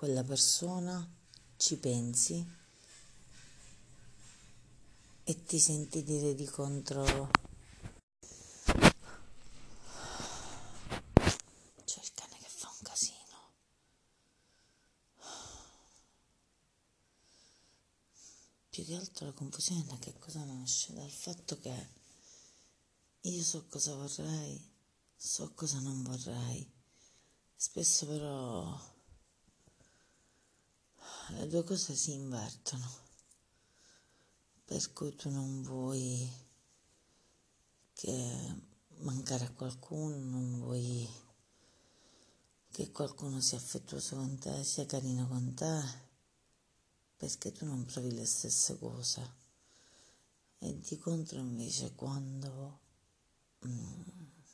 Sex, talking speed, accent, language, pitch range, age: female, 85 wpm, native, Italian, 125-155 Hz, 30-49